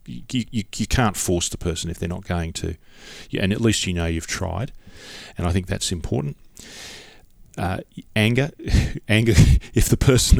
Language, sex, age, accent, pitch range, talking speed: English, male, 40-59, Australian, 90-105 Hz, 180 wpm